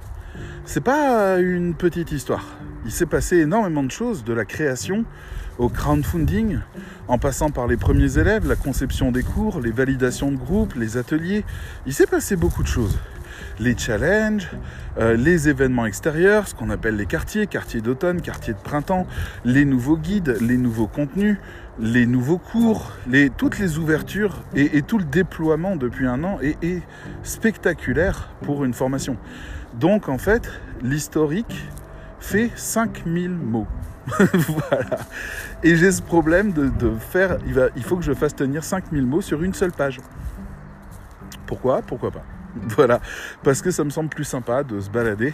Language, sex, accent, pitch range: French, male, French, 115-170 Hz